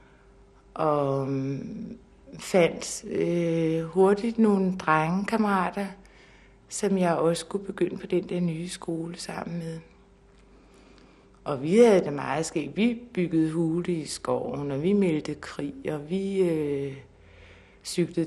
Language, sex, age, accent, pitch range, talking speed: Danish, female, 60-79, native, 150-190 Hz, 120 wpm